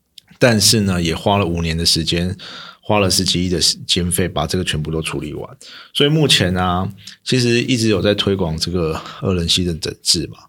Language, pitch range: Chinese, 85-110 Hz